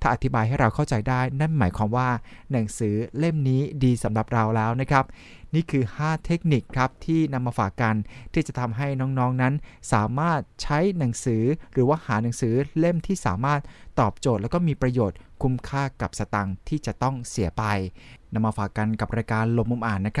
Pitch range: 110-140 Hz